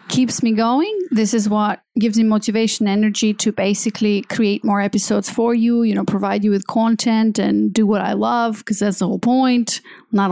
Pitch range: 200-245 Hz